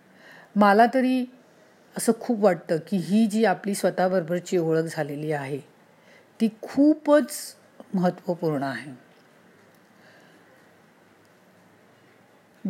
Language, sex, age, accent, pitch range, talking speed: Marathi, female, 40-59, native, 170-210 Hz, 65 wpm